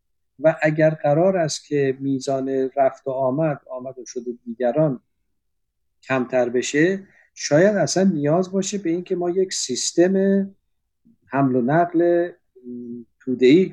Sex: male